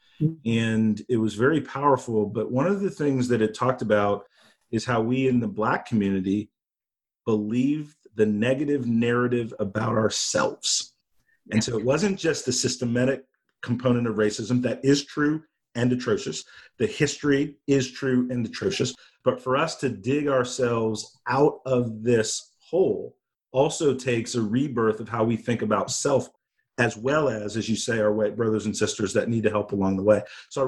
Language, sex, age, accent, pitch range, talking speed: English, male, 40-59, American, 110-135 Hz, 170 wpm